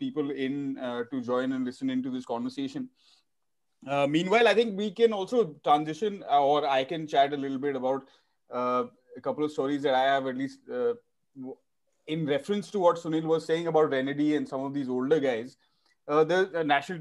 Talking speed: 205 wpm